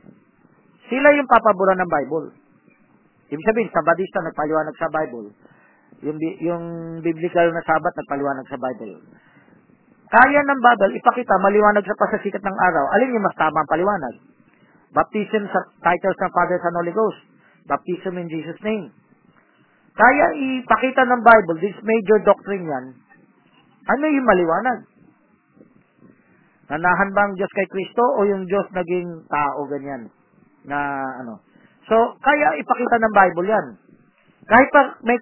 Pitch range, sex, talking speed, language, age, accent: 165-225 Hz, male, 135 wpm, Filipino, 40-59, native